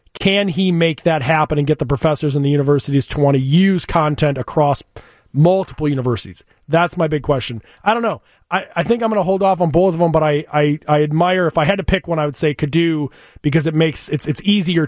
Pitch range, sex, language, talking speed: 145-180 Hz, male, English, 235 wpm